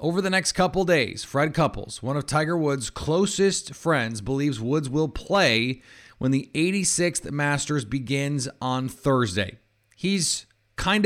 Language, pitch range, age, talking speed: English, 105-150 Hz, 30-49, 140 wpm